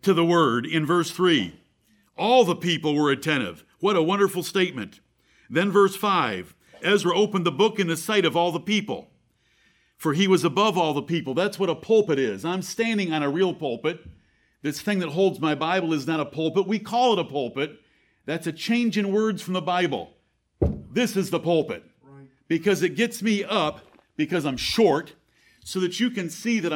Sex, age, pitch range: male, 50-69, 160-210 Hz